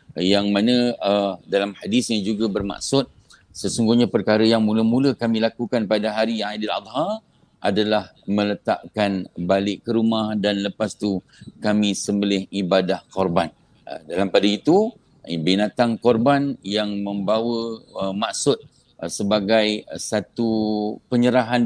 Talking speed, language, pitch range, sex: 120 wpm, English, 100-115 Hz, male